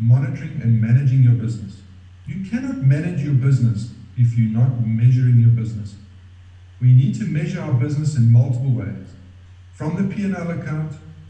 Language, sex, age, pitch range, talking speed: English, male, 50-69, 110-145 Hz, 155 wpm